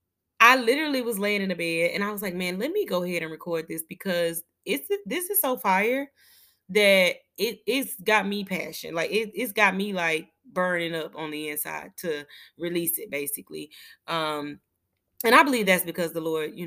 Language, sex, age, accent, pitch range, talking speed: English, female, 20-39, American, 165-245 Hz, 205 wpm